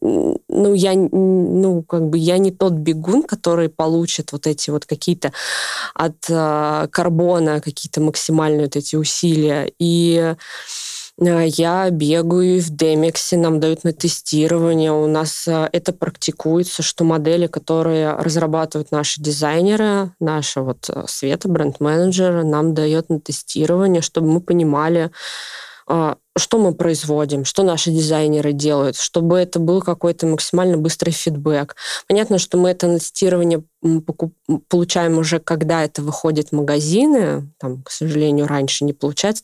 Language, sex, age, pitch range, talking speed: Russian, female, 20-39, 150-170 Hz, 130 wpm